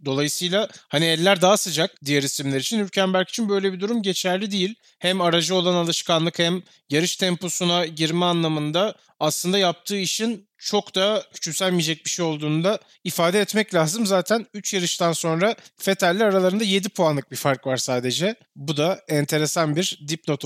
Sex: male